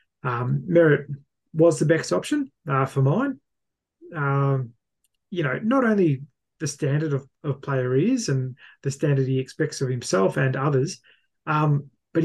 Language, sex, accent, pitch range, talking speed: English, male, Australian, 130-155 Hz, 150 wpm